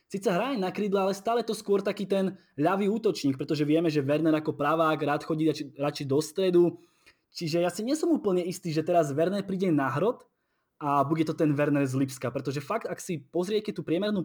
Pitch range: 145-180 Hz